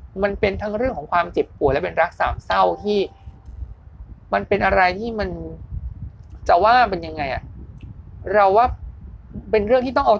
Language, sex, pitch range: Thai, male, 145-215 Hz